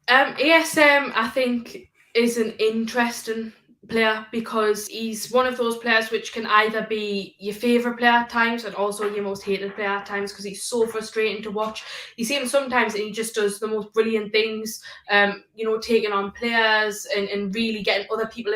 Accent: British